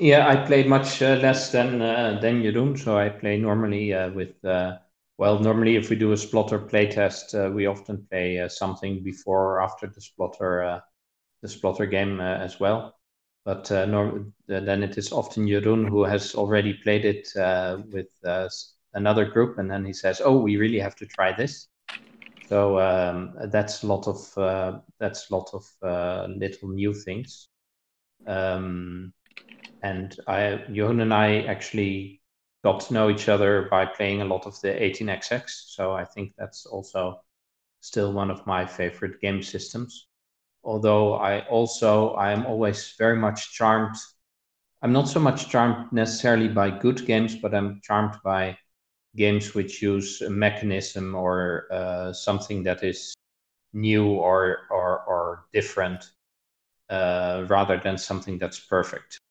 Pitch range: 95-110 Hz